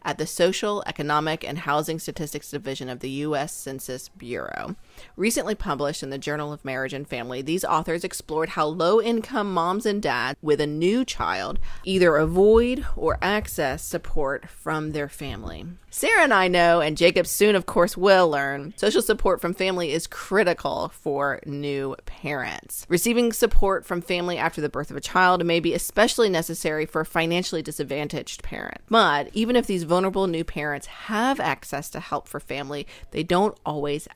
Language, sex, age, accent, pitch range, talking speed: English, female, 30-49, American, 145-190 Hz, 170 wpm